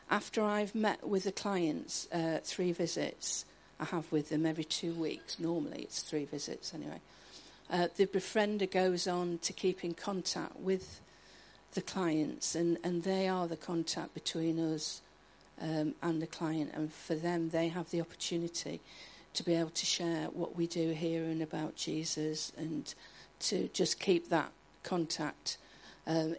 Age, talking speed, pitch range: 50-69, 160 wpm, 160-185 Hz